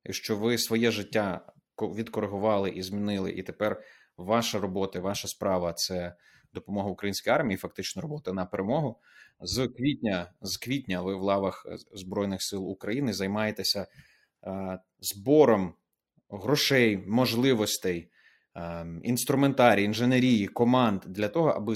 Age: 30-49